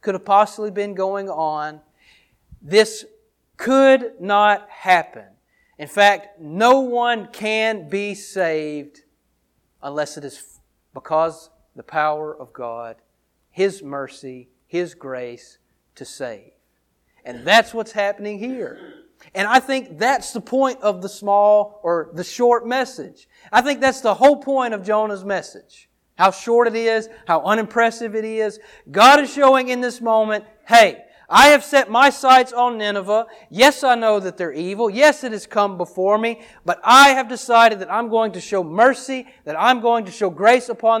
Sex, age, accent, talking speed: male, 40-59, American, 160 wpm